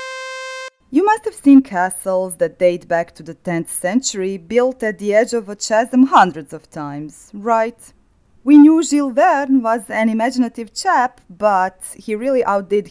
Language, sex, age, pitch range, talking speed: English, female, 30-49, 180-255 Hz, 165 wpm